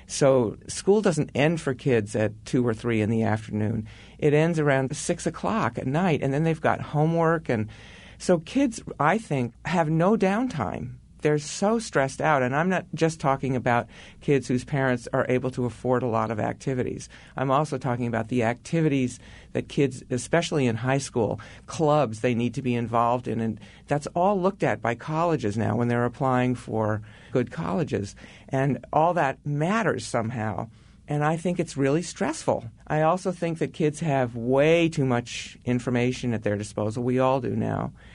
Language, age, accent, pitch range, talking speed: English, 50-69, American, 110-145 Hz, 180 wpm